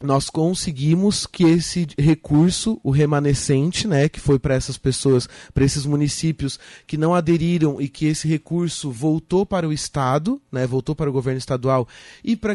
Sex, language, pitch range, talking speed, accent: male, Portuguese, 135-165 Hz, 165 wpm, Brazilian